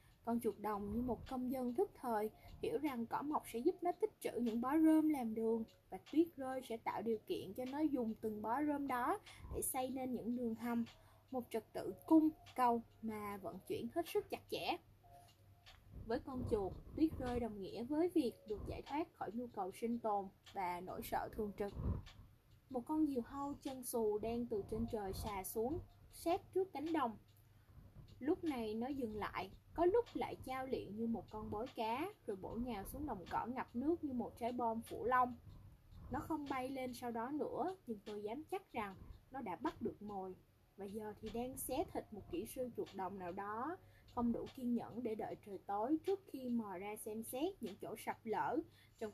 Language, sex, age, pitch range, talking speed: Vietnamese, female, 20-39, 215-295 Hz, 210 wpm